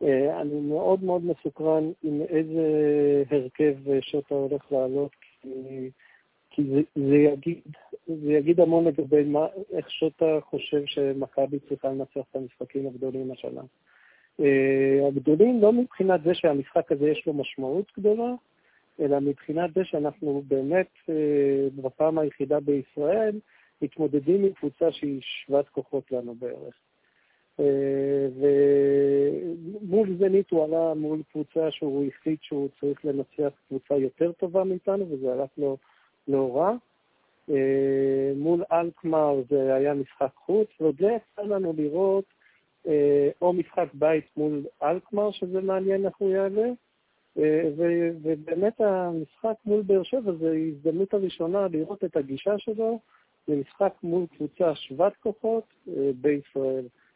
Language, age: Hebrew, 50-69